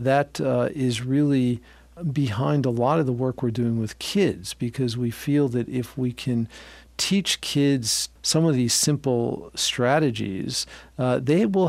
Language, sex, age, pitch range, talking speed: English, male, 50-69, 120-140 Hz, 160 wpm